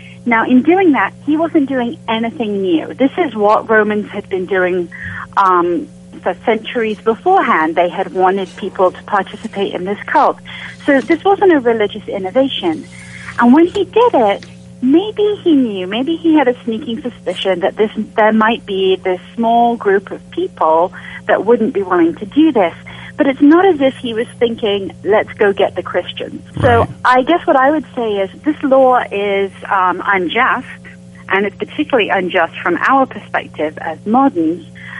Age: 40-59